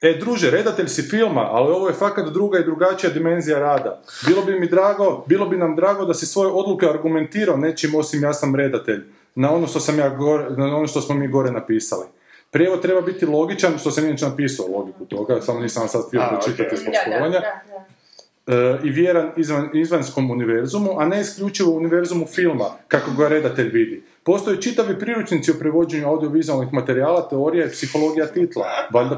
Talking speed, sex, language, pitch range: 175 wpm, male, Croatian, 130-175 Hz